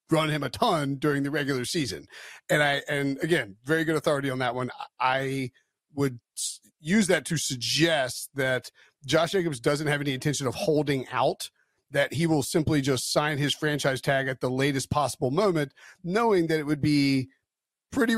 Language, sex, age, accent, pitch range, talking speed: English, male, 40-59, American, 135-165 Hz, 180 wpm